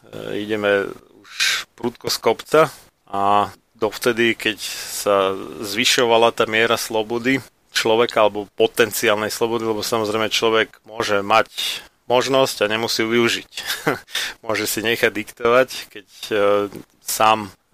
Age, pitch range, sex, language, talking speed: 30-49, 105-120 Hz, male, Slovak, 110 wpm